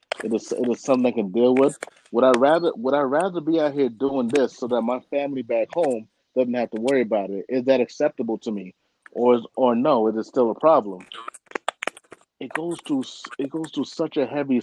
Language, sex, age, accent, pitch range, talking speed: English, male, 30-49, American, 120-135 Hz, 225 wpm